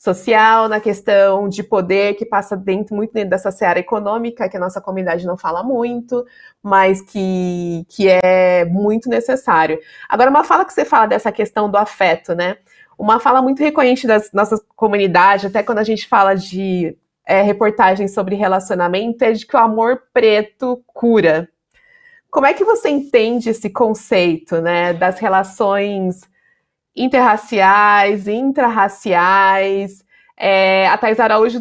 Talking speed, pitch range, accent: 145 wpm, 195-235 Hz, Brazilian